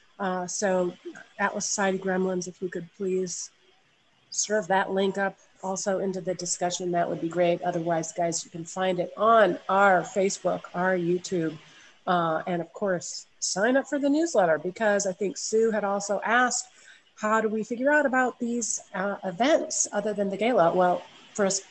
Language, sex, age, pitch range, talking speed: English, female, 40-59, 180-210 Hz, 175 wpm